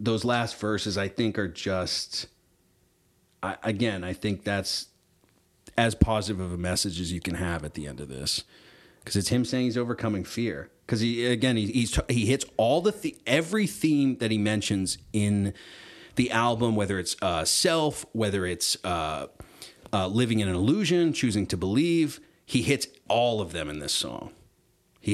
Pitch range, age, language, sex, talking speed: 95-125 Hz, 30-49, English, male, 180 wpm